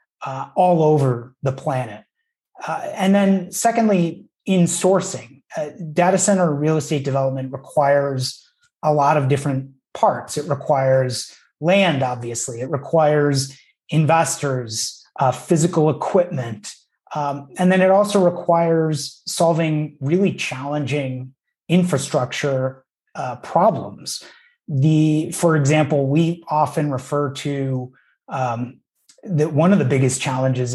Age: 30-49